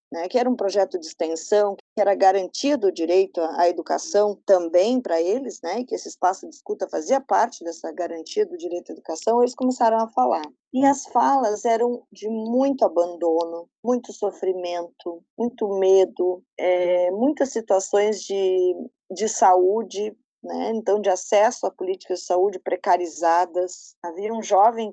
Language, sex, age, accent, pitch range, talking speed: Portuguese, female, 20-39, Brazilian, 185-245 Hz, 150 wpm